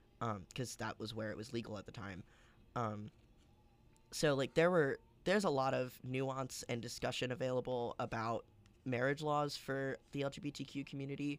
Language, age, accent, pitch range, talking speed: English, 10-29, American, 115-140 Hz, 170 wpm